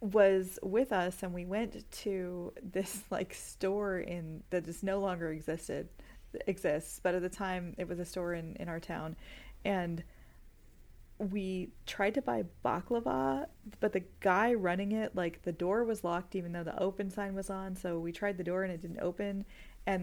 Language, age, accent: English, 30-49, American